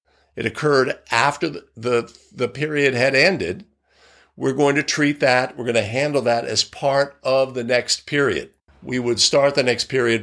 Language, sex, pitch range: English, male, 120-145 Hz